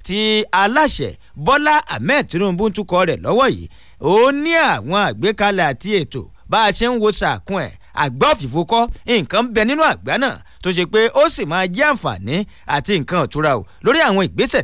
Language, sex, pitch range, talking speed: English, male, 165-235 Hz, 170 wpm